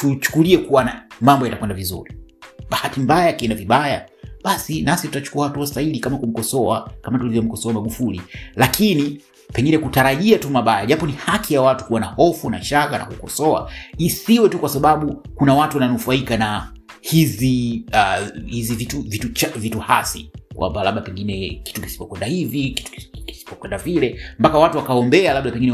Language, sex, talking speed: Swahili, male, 155 wpm